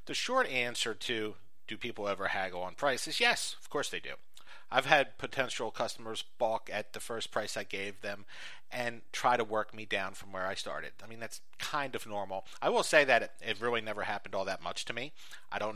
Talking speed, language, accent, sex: 225 wpm, English, American, male